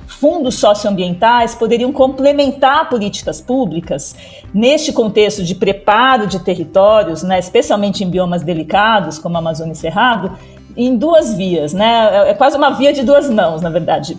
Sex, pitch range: female, 200-260 Hz